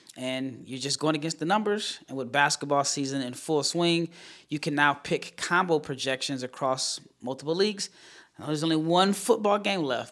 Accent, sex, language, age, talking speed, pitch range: American, male, English, 20-39, 170 wpm, 130-150 Hz